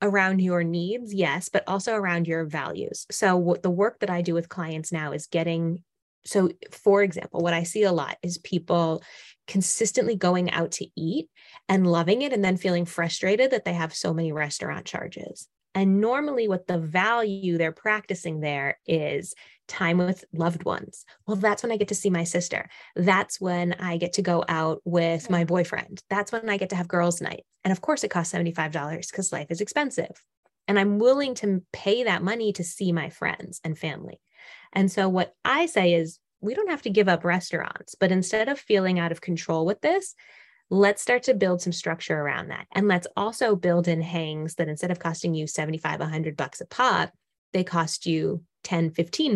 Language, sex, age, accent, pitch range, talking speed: English, female, 20-39, American, 170-205 Hz, 200 wpm